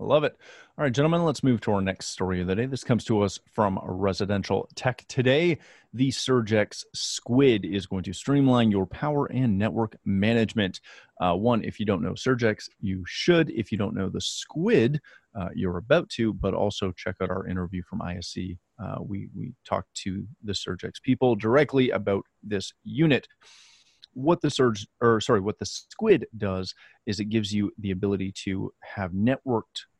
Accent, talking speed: American, 180 wpm